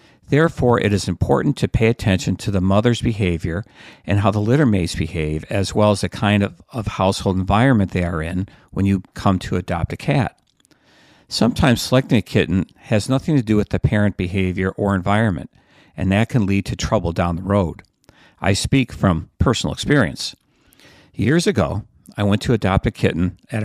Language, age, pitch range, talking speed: English, 50-69, 90-115 Hz, 185 wpm